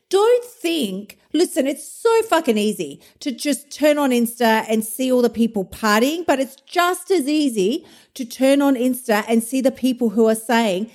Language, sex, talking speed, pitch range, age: English, female, 185 wpm, 180-270 Hz, 40-59